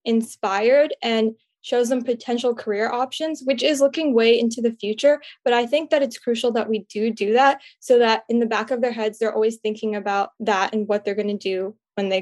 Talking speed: 225 wpm